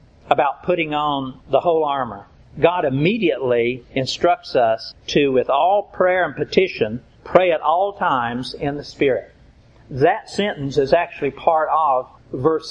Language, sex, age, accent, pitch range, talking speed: English, male, 50-69, American, 140-180 Hz, 140 wpm